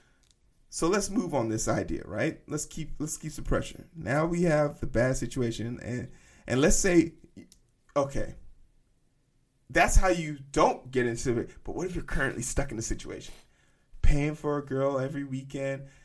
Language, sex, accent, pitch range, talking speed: English, male, American, 125-165 Hz, 170 wpm